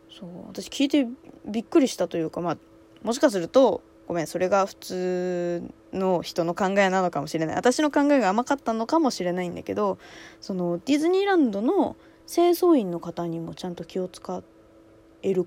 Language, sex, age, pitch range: Japanese, female, 20-39, 175-260 Hz